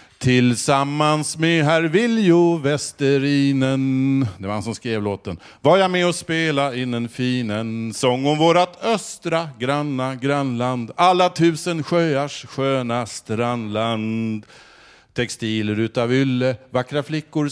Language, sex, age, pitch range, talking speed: Swedish, male, 50-69, 120-165 Hz, 120 wpm